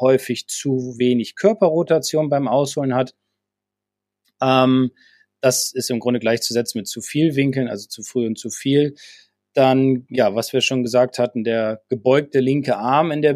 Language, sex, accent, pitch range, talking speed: German, male, German, 115-130 Hz, 160 wpm